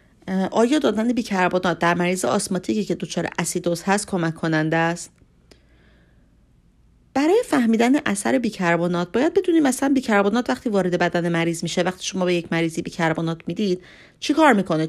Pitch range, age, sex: 170-220 Hz, 40-59, female